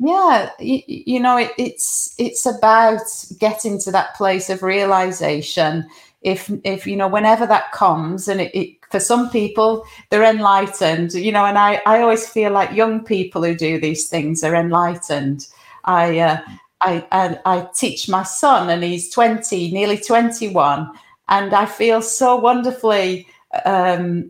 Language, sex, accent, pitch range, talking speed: English, female, British, 185-235 Hz, 160 wpm